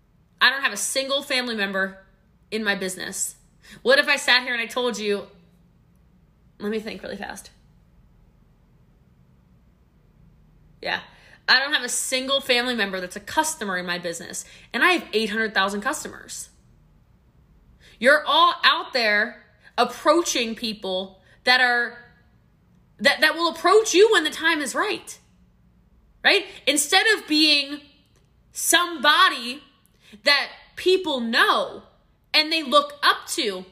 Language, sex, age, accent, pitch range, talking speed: English, female, 20-39, American, 230-340 Hz, 130 wpm